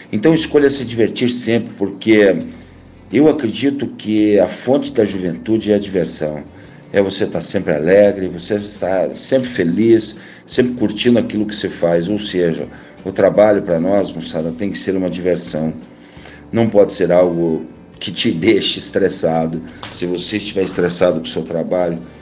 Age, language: 50-69, Portuguese